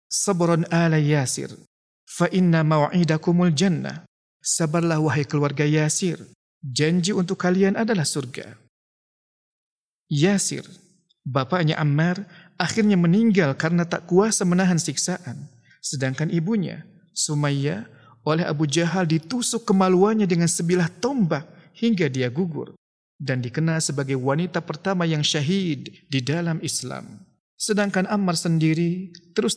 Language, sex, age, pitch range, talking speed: Indonesian, male, 50-69, 150-185 Hz, 110 wpm